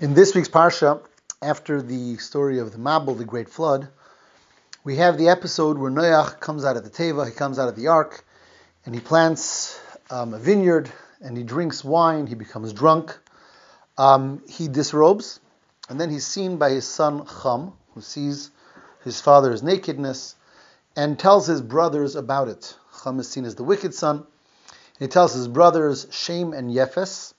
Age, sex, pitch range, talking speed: 30-49, male, 130-170 Hz, 175 wpm